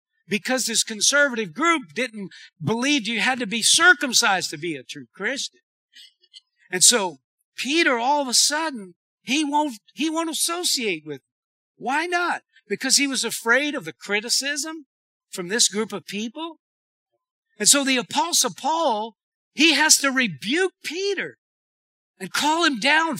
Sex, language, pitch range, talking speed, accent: male, English, 220-310 Hz, 145 wpm, American